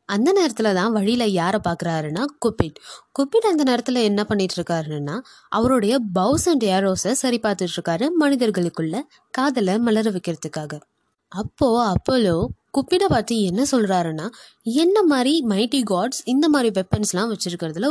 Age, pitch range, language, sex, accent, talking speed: 20-39, 185-260 Hz, Tamil, female, native, 125 wpm